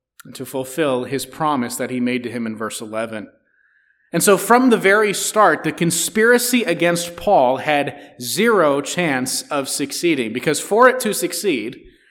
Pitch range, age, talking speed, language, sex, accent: 130-185 Hz, 30-49, 160 wpm, English, male, American